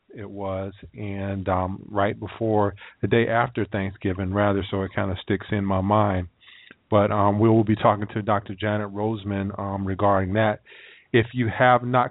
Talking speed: 180 wpm